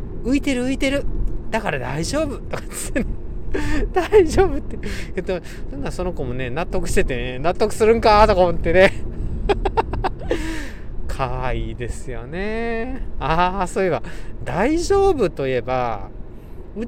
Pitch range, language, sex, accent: 120-200 Hz, Japanese, male, native